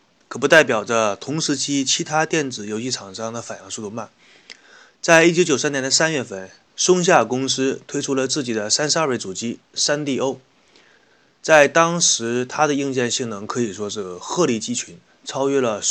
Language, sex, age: Chinese, male, 20-39